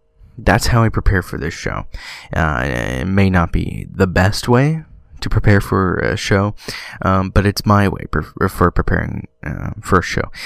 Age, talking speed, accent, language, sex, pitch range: 20-39, 185 wpm, American, English, male, 90-110 Hz